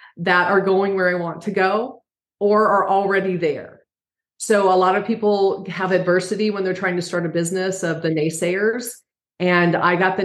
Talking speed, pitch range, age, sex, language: 195 wpm, 165-200 Hz, 40-59, female, English